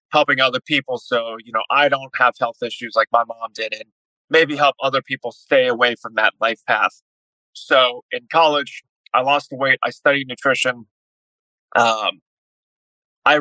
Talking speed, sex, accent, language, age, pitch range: 170 wpm, male, American, English, 30-49, 115-140 Hz